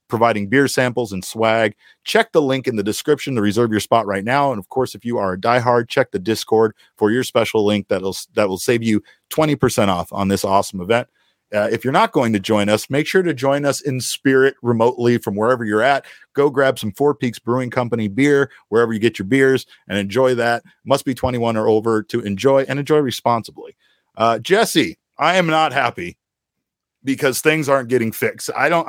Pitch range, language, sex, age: 110-140 Hz, English, male, 40-59